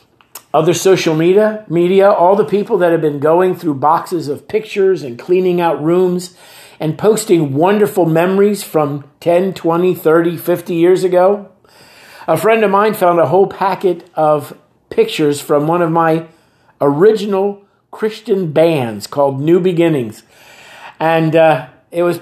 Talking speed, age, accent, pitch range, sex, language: 145 wpm, 50-69, American, 155-190 Hz, male, English